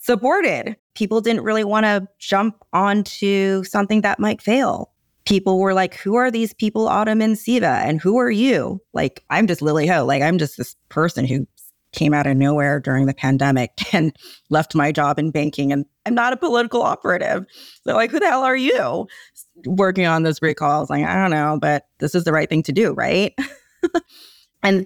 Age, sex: 20-39, female